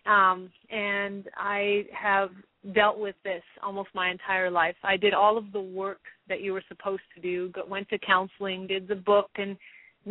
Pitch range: 195-235 Hz